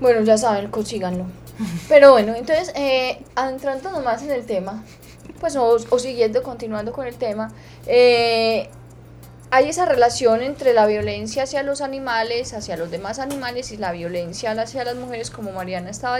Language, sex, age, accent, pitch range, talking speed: Spanish, female, 10-29, Colombian, 200-275 Hz, 165 wpm